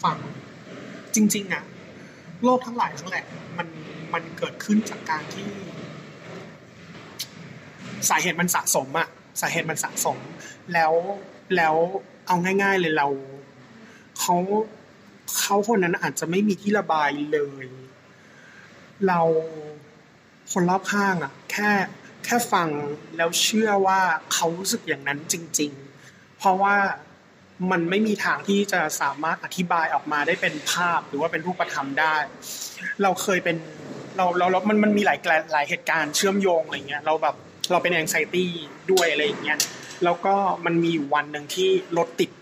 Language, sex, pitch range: Thai, male, 155-195 Hz